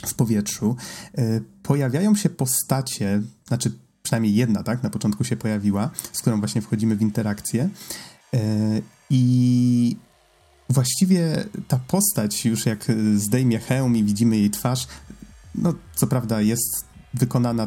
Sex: male